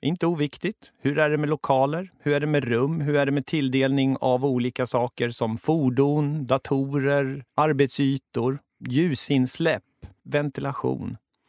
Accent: native